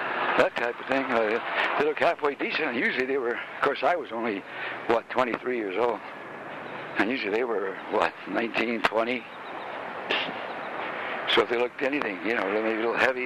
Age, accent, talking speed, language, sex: 60-79, American, 180 wpm, English, male